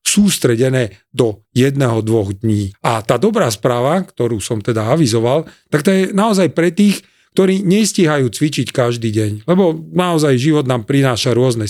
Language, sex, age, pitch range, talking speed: Slovak, male, 40-59, 120-160 Hz, 150 wpm